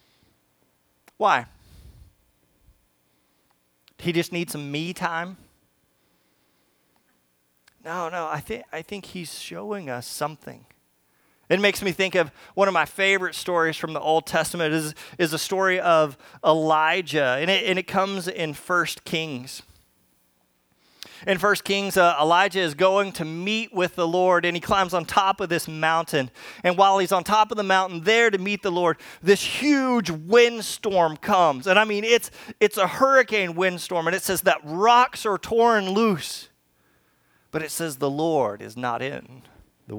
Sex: male